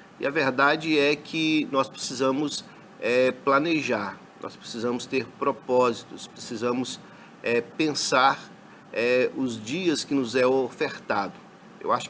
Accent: Brazilian